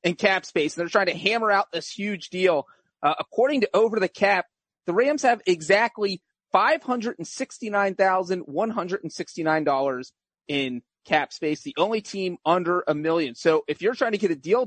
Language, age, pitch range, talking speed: English, 30-49, 160-200 Hz, 165 wpm